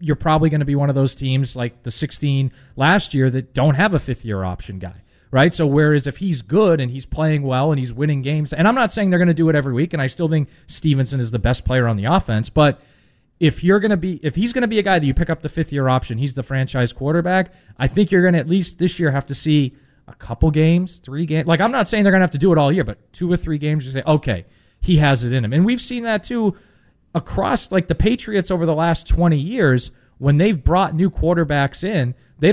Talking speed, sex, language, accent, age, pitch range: 275 wpm, male, English, American, 20-39, 130-170 Hz